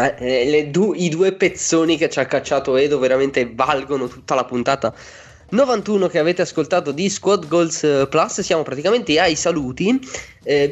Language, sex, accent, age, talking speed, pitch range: Italian, male, native, 20-39, 160 wpm, 120-170 Hz